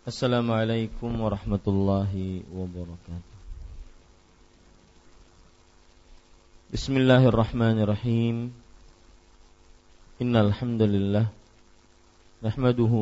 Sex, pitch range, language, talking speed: male, 95-110 Hz, English, 60 wpm